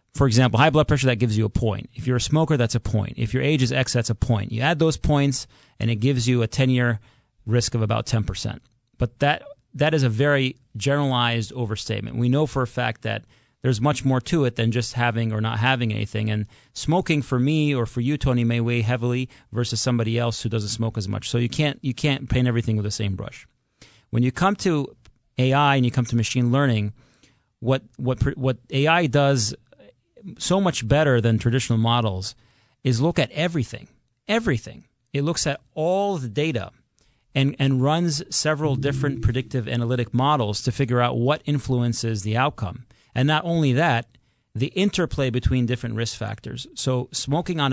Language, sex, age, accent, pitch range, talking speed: English, male, 30-49, American, 115-140 Hz, 195 wpm